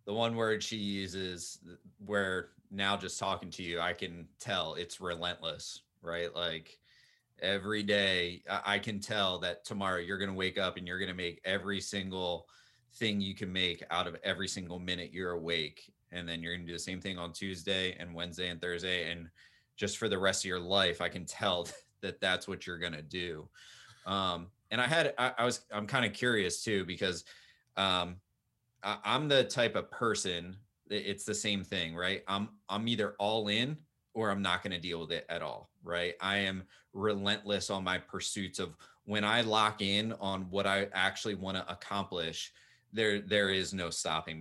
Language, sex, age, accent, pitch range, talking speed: English, male, 30-49, American, 90-105 Hz, 195 wpm